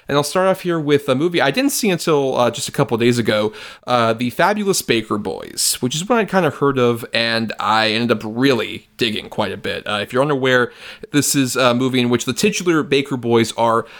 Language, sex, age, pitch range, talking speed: English, male, 30-49, 115-135 Hz, 235 wpm